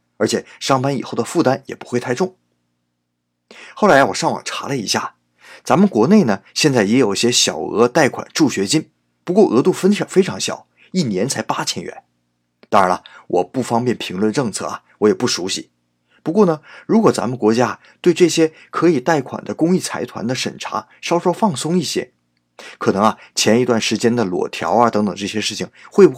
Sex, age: male, 20-39